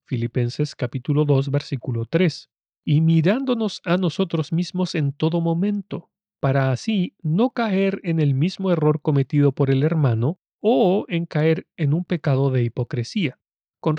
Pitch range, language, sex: 140-180 Hz, Spanish, male